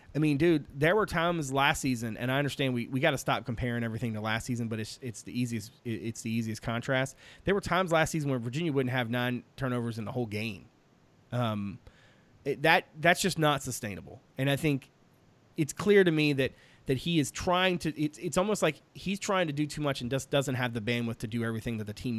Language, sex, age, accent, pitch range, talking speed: English, male, 30-49, American, 115-145 Hz, 235 wpm